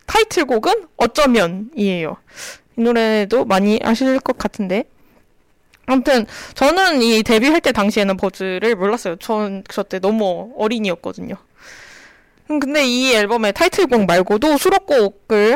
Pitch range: 205-290 Hz